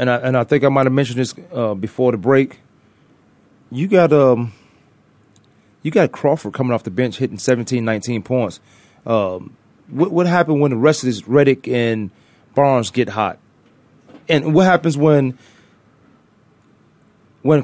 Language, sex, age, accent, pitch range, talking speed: English, male, 30-49, American, 120-155 Hz, 160 wpm